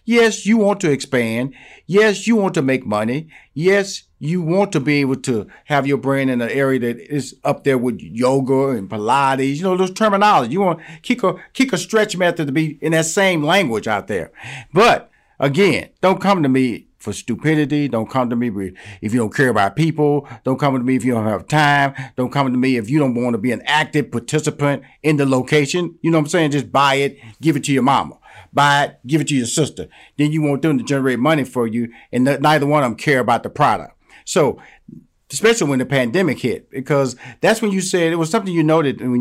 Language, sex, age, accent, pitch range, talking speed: English, male, 40-59, American, 125-160 Hz, 235 wpm